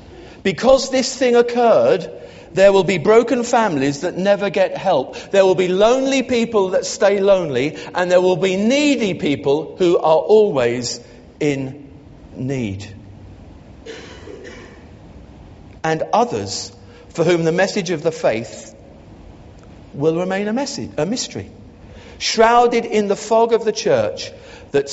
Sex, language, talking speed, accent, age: male, English, 130 wpm, British, 40-59